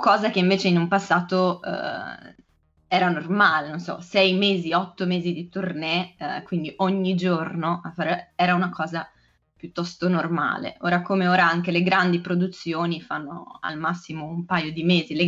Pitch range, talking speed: 165-185 Hz, 165 wpm